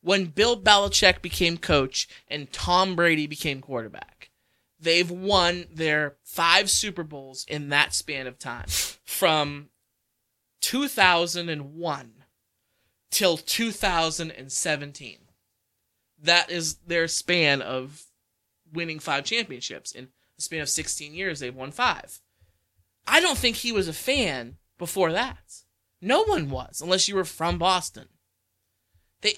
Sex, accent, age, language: male, American, 20-39, English